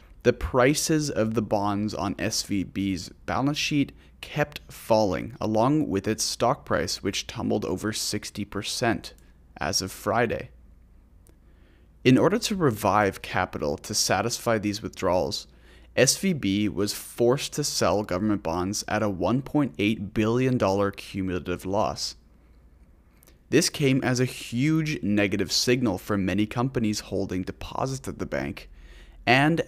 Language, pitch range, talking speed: English, 90-125 Hz, 125 wpm